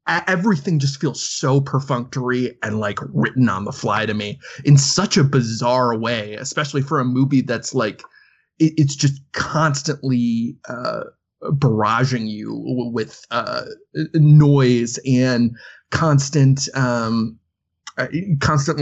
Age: 20-39